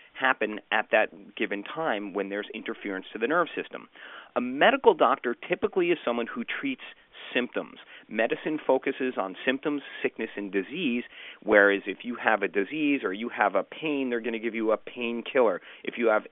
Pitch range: 110-140 Hz